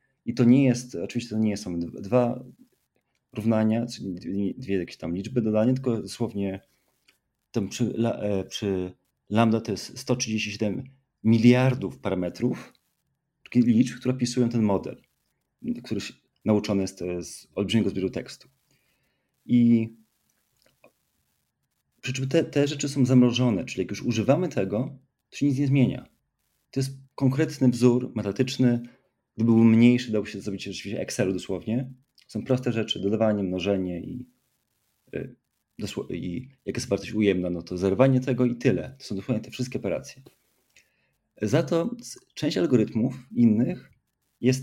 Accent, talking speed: native, 135 wpm